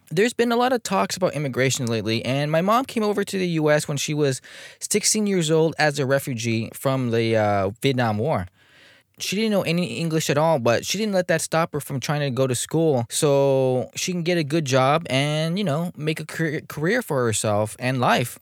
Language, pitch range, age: English, 125-175 Hz, 20-39